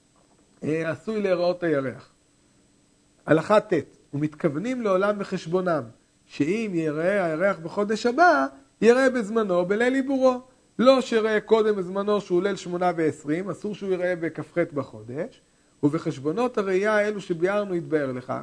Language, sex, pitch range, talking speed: Hebrew, male, 170-215 Hz, 115 wpm